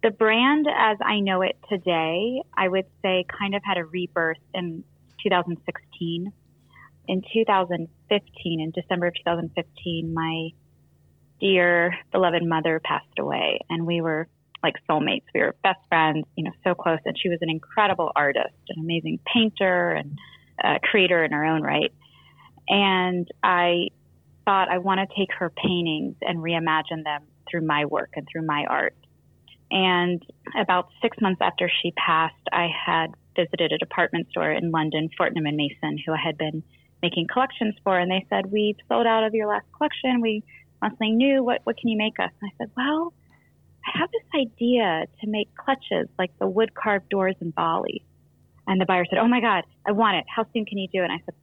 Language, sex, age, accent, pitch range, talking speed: English, female, 30-49, American, 160-200 Hz, 185 wpm